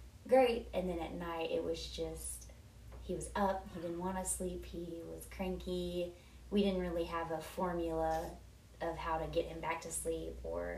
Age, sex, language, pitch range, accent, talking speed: 20-39, female, English, 155-180 Hz, American, 190 wpm